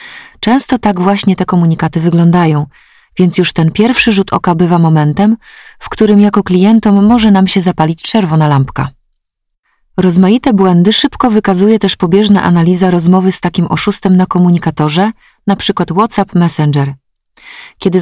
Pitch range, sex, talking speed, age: 165-205 Hz, female, 135 wpm, 30-49